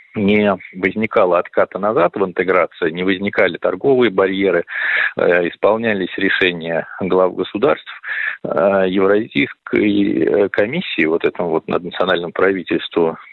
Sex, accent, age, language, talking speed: male, native, 40-59, Russian, 95 wpm